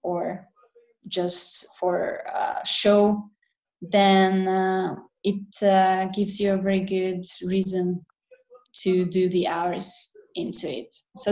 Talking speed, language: 115 wpm, English